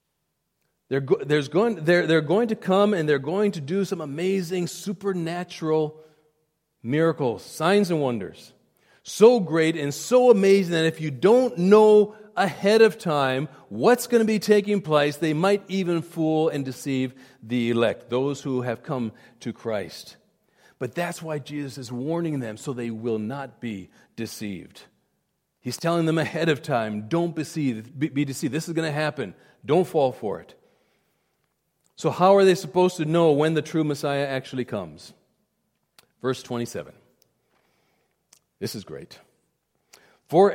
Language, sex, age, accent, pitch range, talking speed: English, male, 40-59, American, 140-200 Hz, 150 wpm